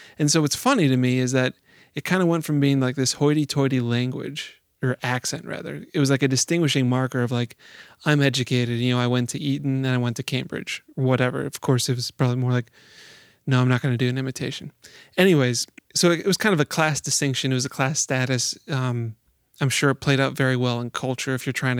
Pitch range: 125-145 Hz